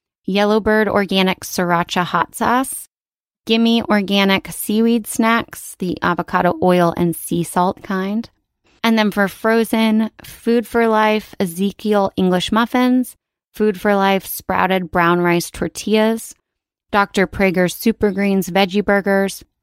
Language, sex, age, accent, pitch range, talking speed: English, female, 20-39, American, 175-215 Hz, 115 wpm